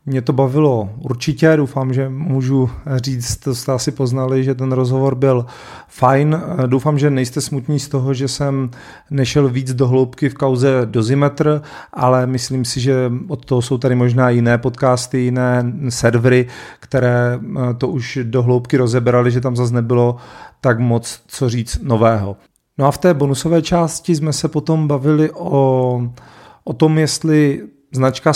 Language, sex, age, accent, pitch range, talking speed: Czech, male, 40-59, native, 130-145 Hz, 160 wpm